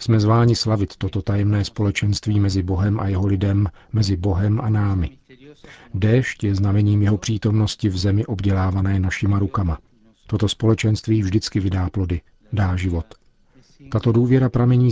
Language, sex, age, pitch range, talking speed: Czech, male, 40-59, 95-110 Hz, 140 wpm